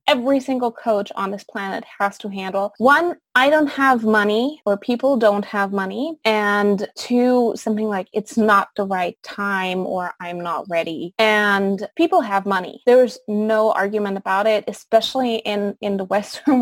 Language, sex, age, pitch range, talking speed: English, female, 20-39, 190-230 Hz, 165 wpm